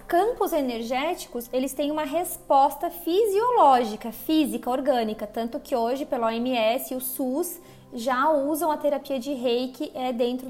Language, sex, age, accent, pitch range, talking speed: Portuguese, female, 20-39, Brazilian, 255-330 Hz, 135 wpm